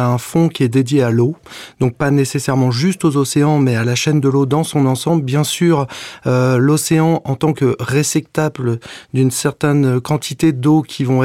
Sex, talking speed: male, 190 wpm